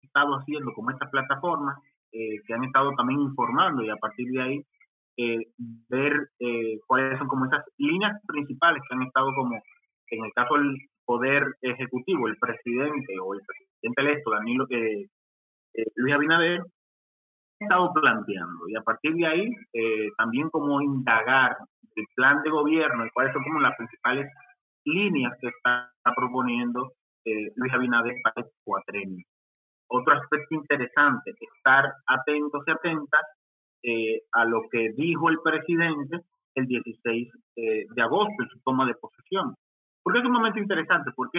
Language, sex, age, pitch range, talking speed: Spanish, male, 30-49, 120-160 Hz, 160 wpm